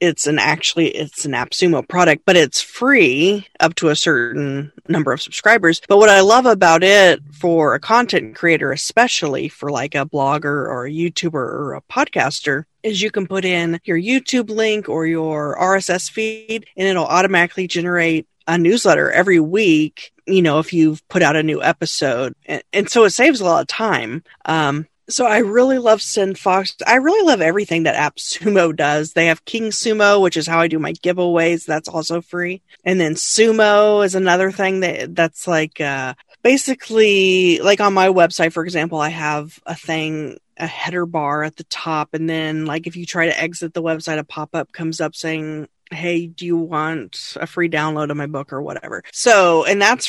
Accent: American